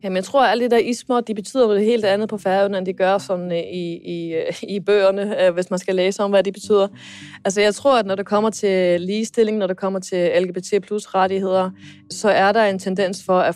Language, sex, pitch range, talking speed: Danish, female, 170-200 Hz, 235 wpm